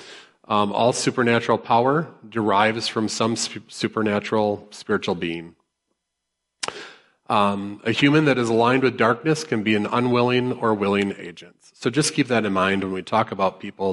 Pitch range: 95-120 Hz